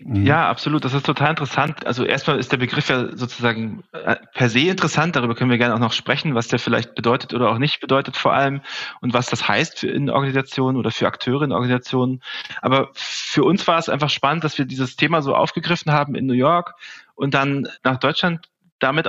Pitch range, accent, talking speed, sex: 125-150 Hz, German, 210 wpm, male